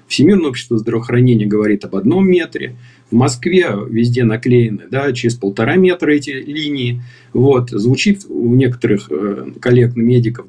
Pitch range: 120-150 Hz